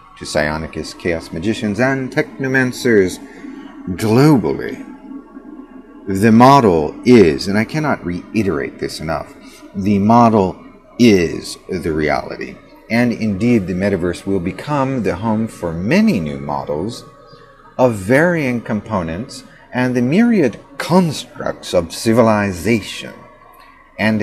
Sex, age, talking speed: male, 40-59, 105 wpm